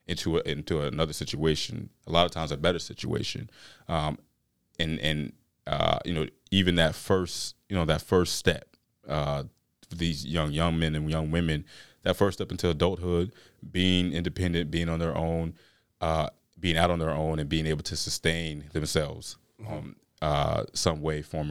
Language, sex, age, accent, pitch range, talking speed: English, male, 30-49, American, 80-90 Hz, 170 wpm